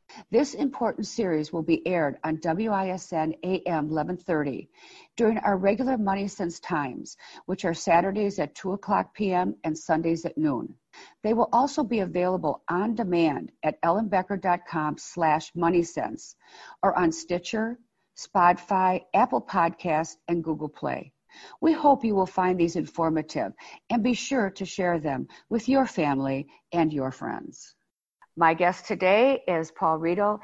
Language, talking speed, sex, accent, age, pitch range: English, 140 wpm, female, American, 50-69, 165-210 Hz